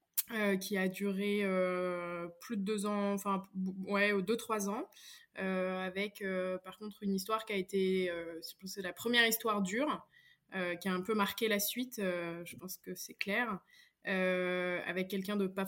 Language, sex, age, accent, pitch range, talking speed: French, female, 20-39, French, 185-215 Hz, 205 wpm